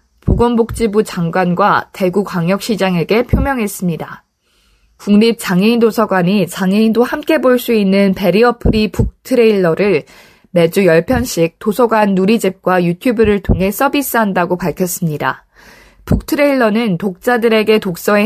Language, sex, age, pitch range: Korean, female, 20-39, 190-240 Hz